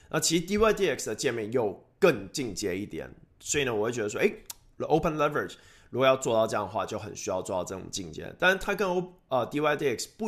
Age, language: 20-39, Chinese